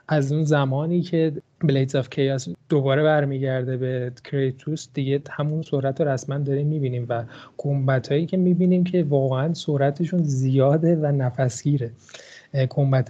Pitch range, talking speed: 130-150 Hz, 145 wpm